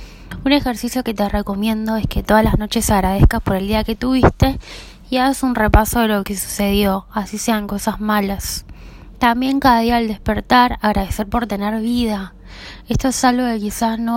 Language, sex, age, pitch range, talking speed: Spanish, female, 20-39, 205-240 Hz, 180 wpm